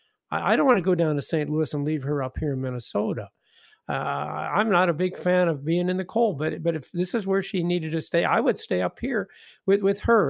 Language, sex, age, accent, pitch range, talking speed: English, male, 50-69, American, 145-190 Hz, 260 wpm